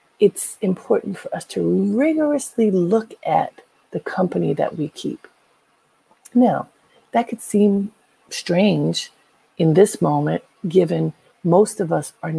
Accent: American